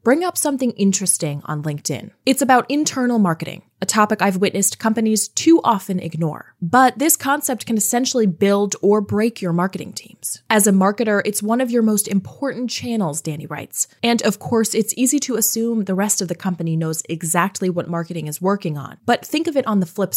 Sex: female